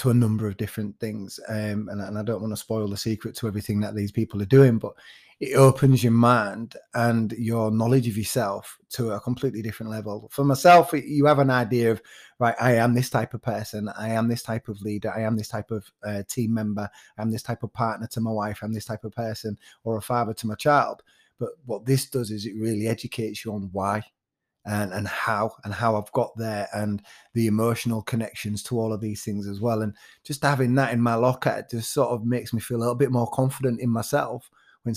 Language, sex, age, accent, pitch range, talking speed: English, male, 30-49, British, 110-120 Hz, 235 wpm